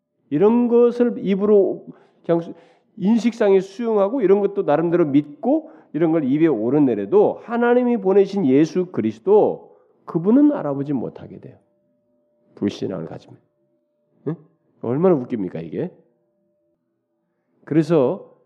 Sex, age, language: male, 40-59, Korean